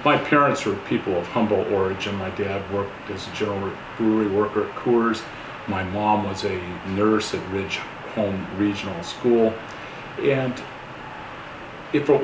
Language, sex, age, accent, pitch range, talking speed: English, male, 40-59, American, 105-125 Hz, 145 wpm